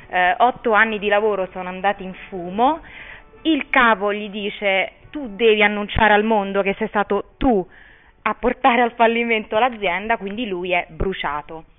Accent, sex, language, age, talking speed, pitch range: native, female, Italian, 30-49, 160 wpm, 200-265 Hz